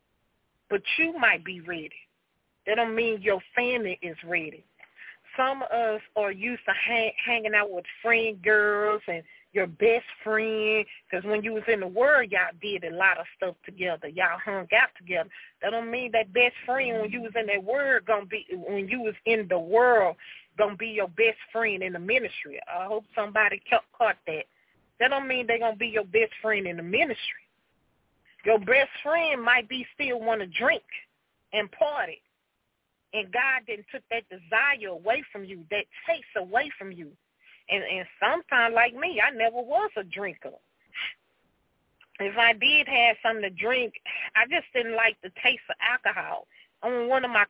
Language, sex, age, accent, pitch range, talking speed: English, female, 30-49, American, 205-245 Hz, 185 wpm